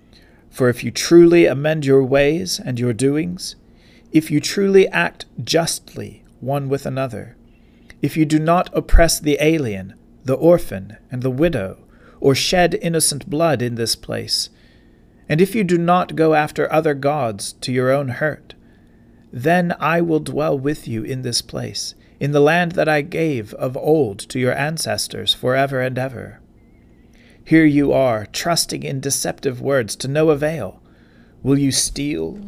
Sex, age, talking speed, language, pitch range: male, 40-59, 160 wpm, English, 130-155 Hz